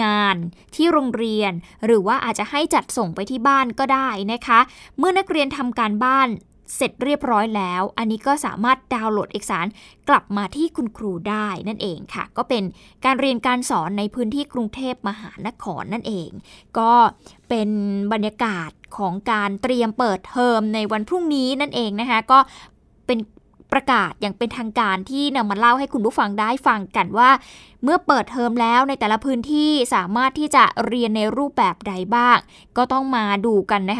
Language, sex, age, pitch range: Thai, female, 20-39, 210-265 Hz